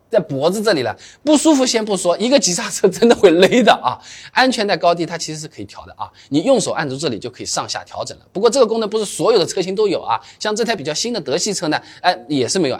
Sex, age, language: male, 20-39, Chinese